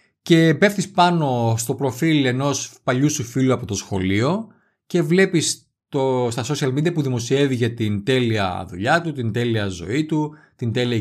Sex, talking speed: male, 165 wpm